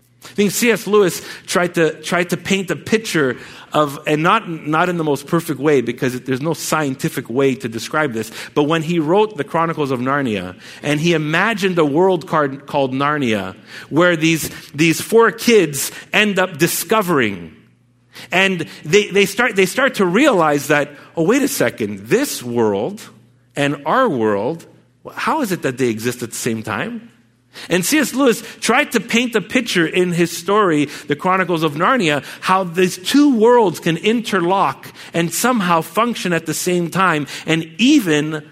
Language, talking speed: English, 170 wpm